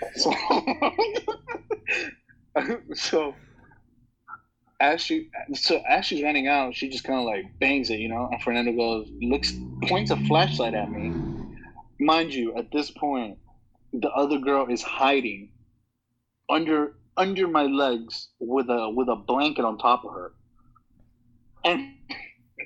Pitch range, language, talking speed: 120-200 Hz, English, 135 wpm